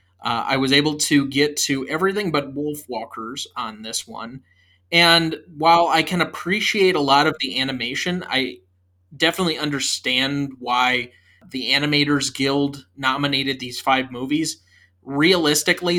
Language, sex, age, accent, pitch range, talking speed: English, male, 20-39, American, 125-145 Hz, 130 wpm